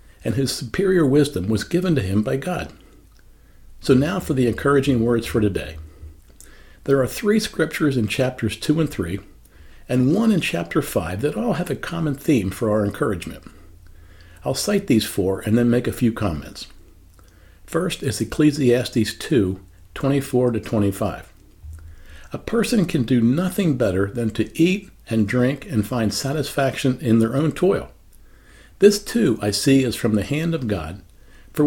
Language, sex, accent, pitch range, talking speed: English, male, American, 100-150 Hz, 165 wpm